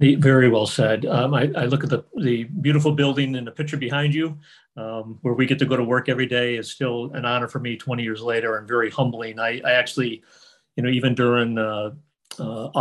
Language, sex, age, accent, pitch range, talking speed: English, male, 40-59, American, 120-140 Hz, 225 wpm